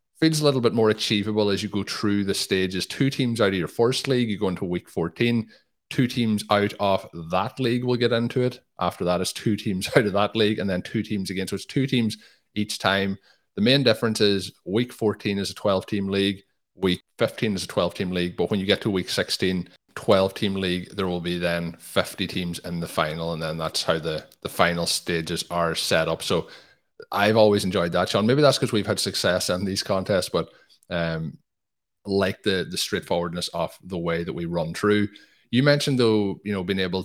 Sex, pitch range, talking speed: male, 90-110 Hz, 220 wpm